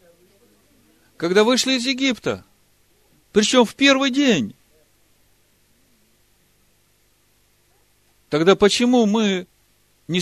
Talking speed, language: 70 wpm, Russian